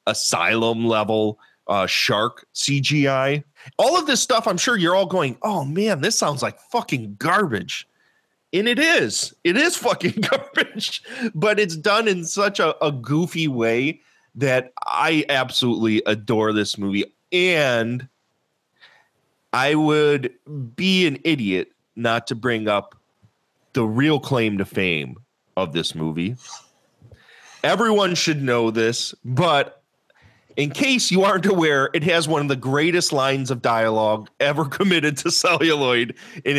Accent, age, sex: American, 30-49, male